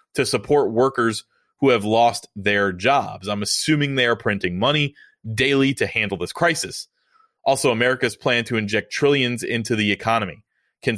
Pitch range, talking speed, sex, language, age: 105-140 Hz, 160 wpm, male, English, 30-49